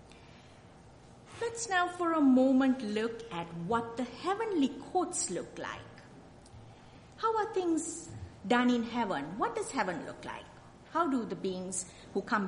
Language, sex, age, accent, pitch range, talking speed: English, female, 50-69, Indian, 195-300 Hz, 145 wpm